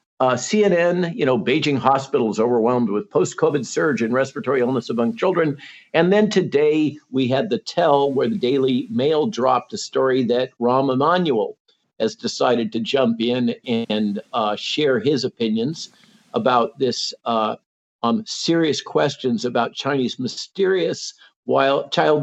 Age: 50-69